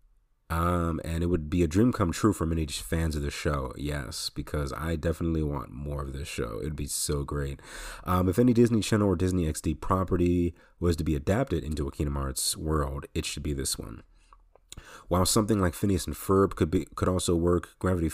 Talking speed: 210 wpm